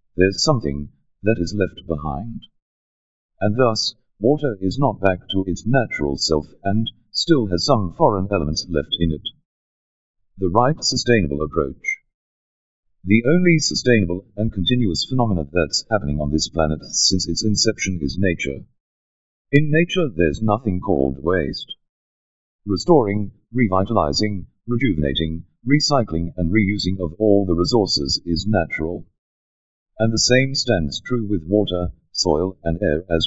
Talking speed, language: 135 wpm, Hindi